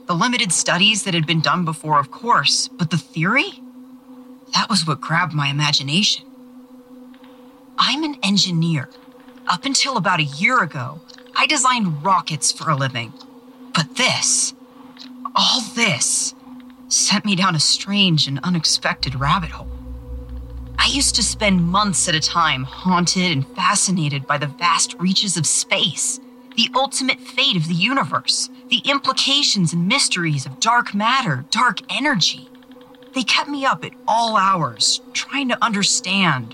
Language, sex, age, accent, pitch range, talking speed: English, female, 40-59, American, 160-255 Hz, 145 wpm